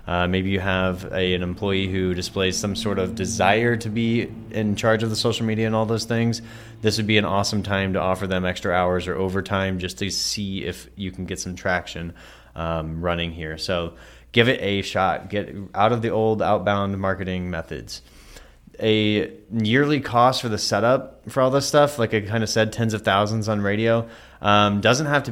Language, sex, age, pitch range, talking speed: English, male, 20-39, 95-110 Hz, 205 wpm